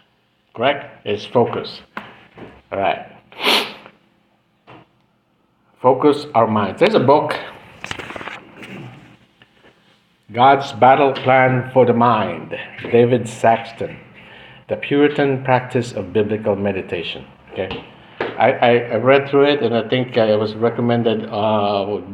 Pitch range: 105-130 Hz